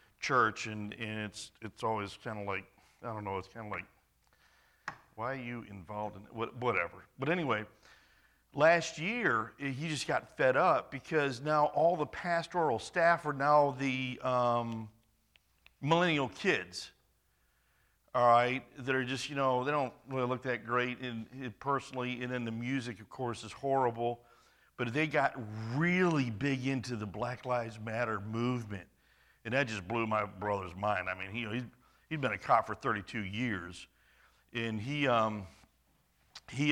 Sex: male